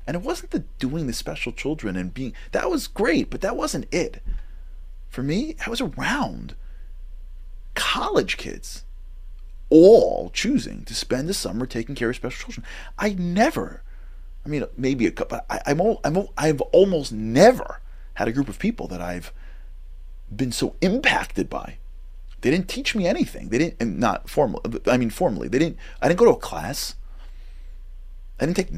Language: English